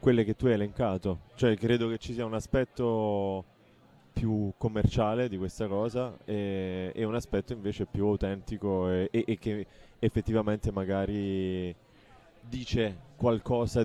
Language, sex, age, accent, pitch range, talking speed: Italian, male, 30-49, native, 95-115 Hz, 140 wpm